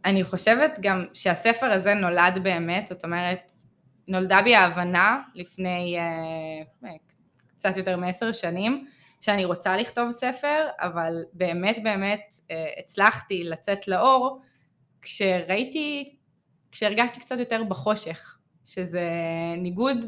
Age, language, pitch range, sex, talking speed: 20-39, Hebrew, 170-220 Hz, female, 100 wpm